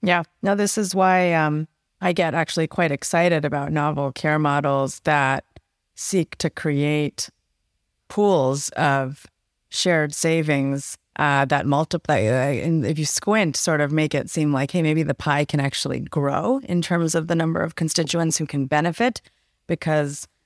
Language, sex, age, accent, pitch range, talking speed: English, female, 30-49, American, 140-170 Hz, 160 wpm